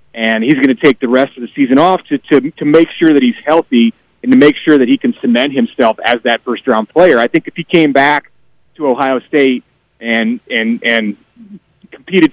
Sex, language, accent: male, English, American